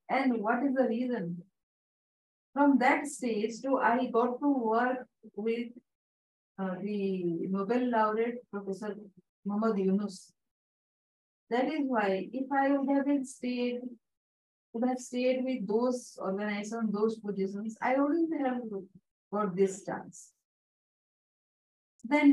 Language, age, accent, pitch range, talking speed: English, 50-69, Indian, 200-260 Hz, 110 wpm